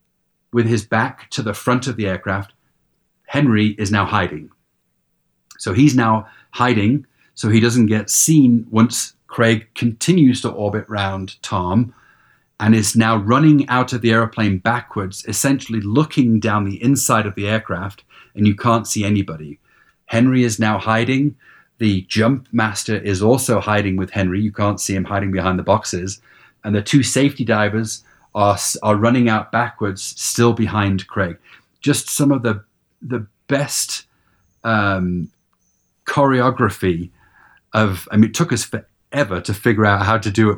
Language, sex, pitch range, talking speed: English, male, 100-120 Hz, 155 wpm